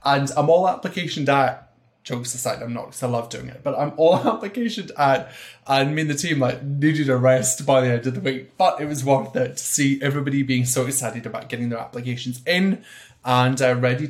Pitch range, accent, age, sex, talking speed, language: 125-175 Hz, British, 20-39, male, 225 wpm, English